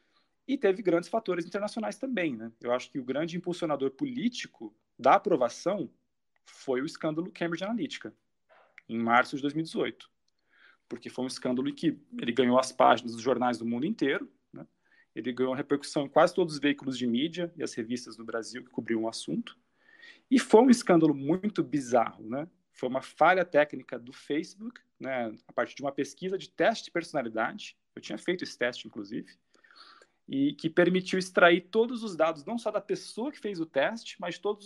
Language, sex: Portuguese, male